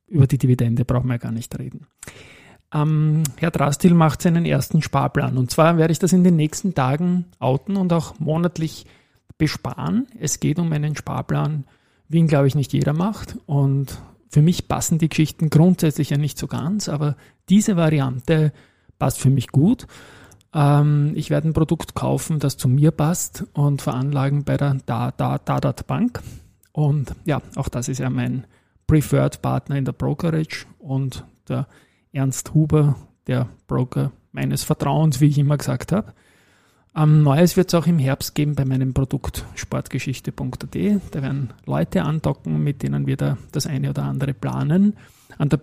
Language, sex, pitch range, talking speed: German, male, 130-155 Hz, 165 wpm